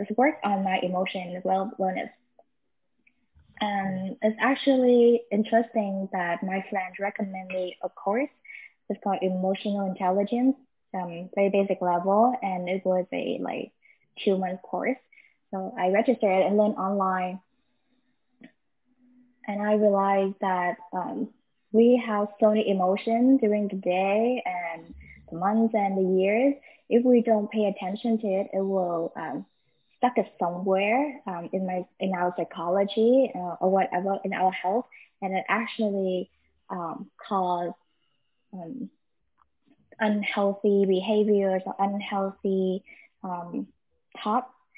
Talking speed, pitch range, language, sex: 125 wpm, 185-230 Hz, English, female